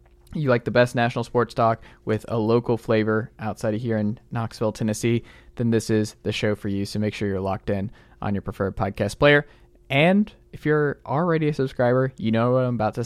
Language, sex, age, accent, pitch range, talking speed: English, male, 20-39, American, 105-130 Hz, 215 wpm